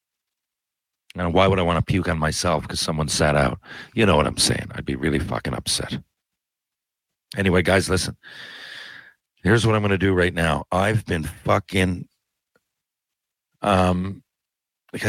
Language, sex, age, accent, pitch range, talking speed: English, male, 50-69, American, 85-100 Hz, 155 wpm